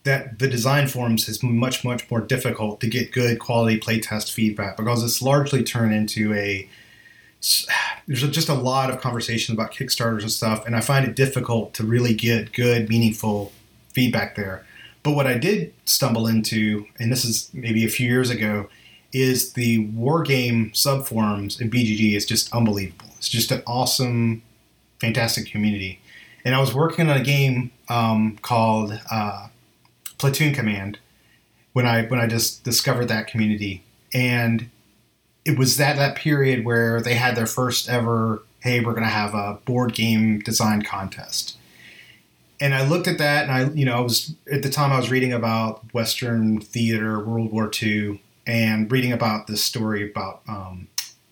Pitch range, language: 110-125 Hz, English